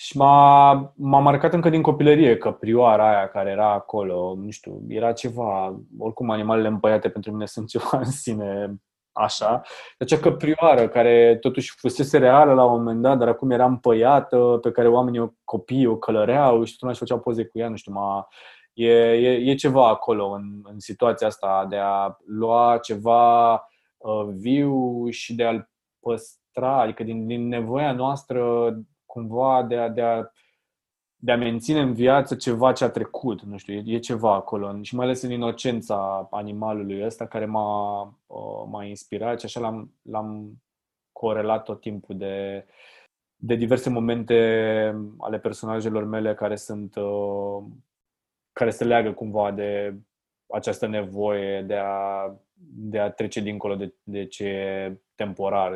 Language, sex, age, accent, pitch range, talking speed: Romanian, male, 20-39, native, 100-120 Hz, 150 wpm